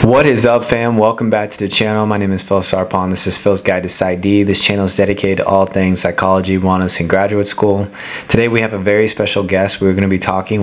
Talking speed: 250 wpm